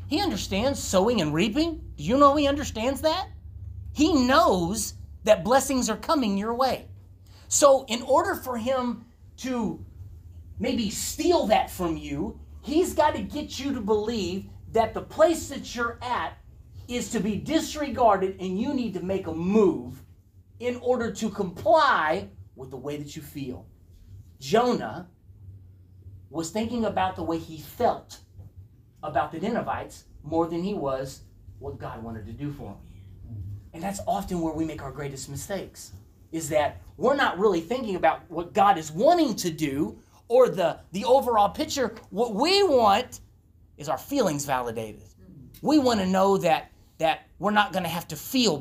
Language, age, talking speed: English, 30-49, 165 wpm